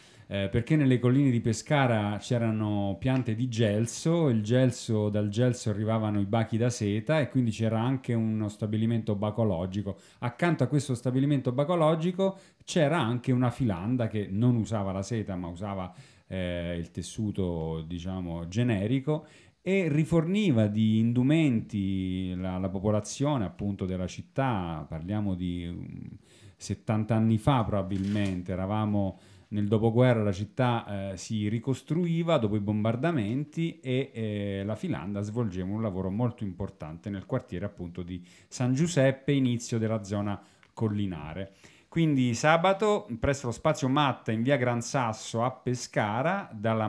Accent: native